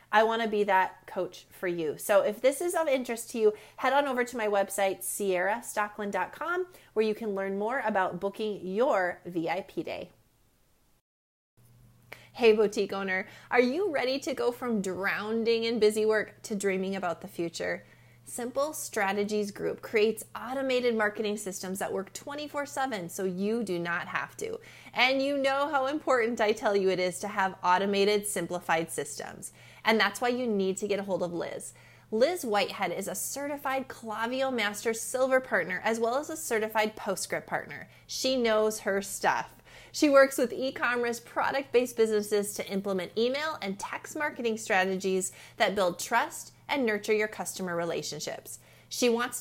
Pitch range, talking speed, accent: 190-245 Hz, 165 wpm, American